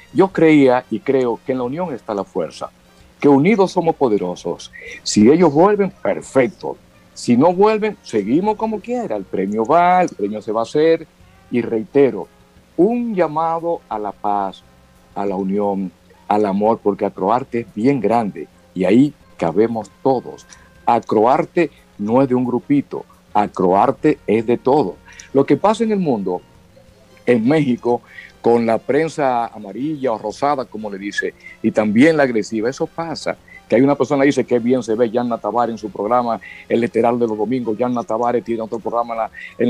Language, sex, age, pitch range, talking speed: Spanish, male, 50-69, 110-165 Hz, 175 wpm